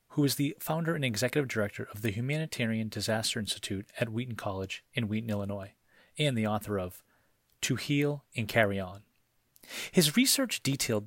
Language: English